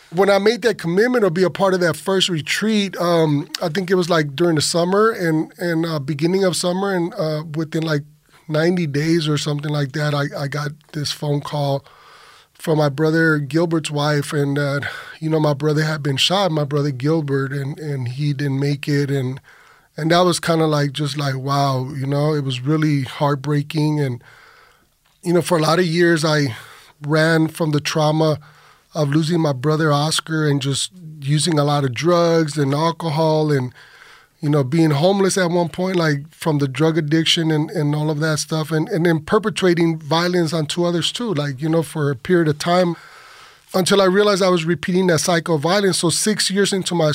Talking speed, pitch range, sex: 205 wpm, 145-175 Hz, male